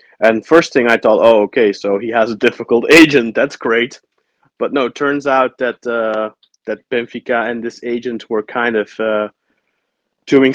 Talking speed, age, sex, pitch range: 180 wpm, 20-39, male, 110-125 Hz